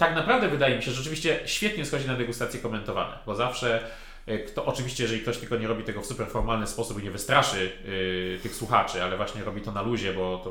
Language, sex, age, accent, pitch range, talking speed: Polish, male, 30-49, native, 100-120 Hz, 215 wpm